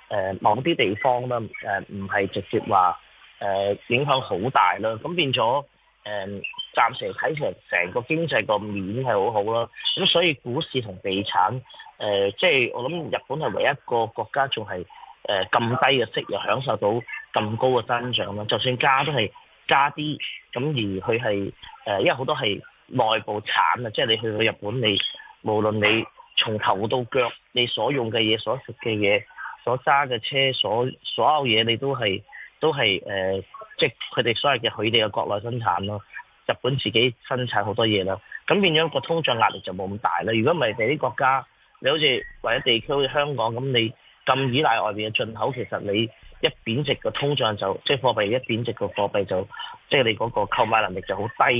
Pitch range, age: 105-145 Hz, 20-39